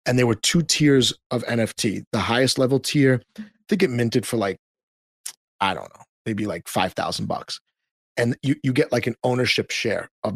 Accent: American